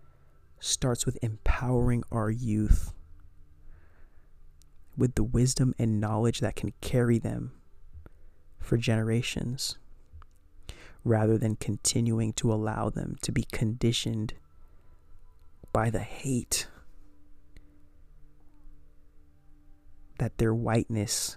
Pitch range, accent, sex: 75-115 Hz, American, male